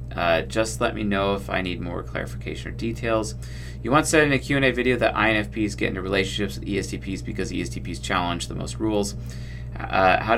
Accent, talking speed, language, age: American, 210 wpm, English, 30-49